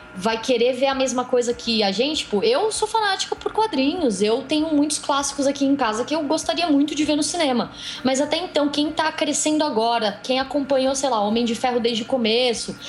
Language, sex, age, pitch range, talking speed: Portuguese, female, 20-39, 225-275 Hz, 220 wpm